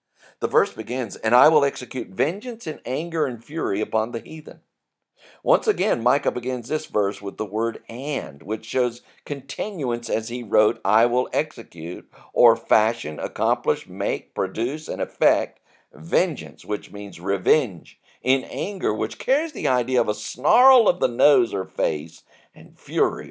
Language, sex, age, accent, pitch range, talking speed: English, male, 50-69, American, 100-165 Hz, 155 wpm